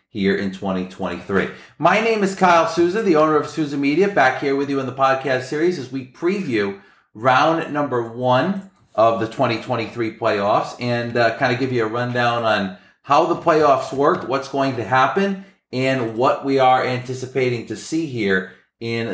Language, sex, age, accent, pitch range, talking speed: English, male, 40-59, American, 115-150 Hz, 175 wpm